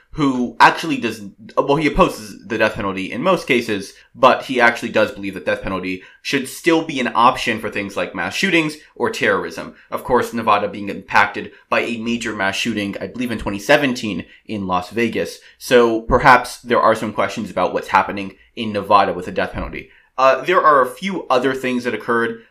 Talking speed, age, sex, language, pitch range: 195 wpm, 30-49, male, English, 105-125 Hz